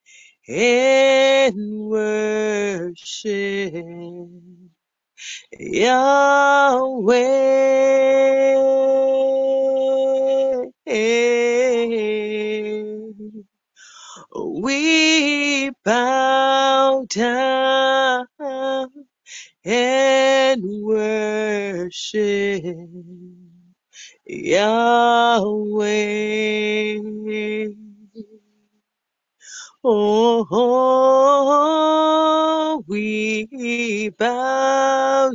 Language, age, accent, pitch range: English, 30-49, American, 215-270 Hz